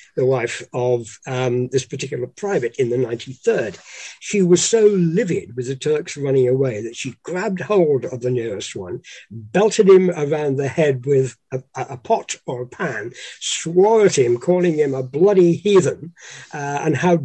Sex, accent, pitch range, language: male, British, 145-190 Hz, English